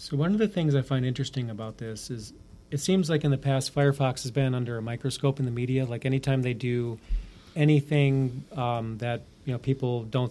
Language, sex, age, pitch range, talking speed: English, male, 30-49, 110-135 Hz, 215 wpm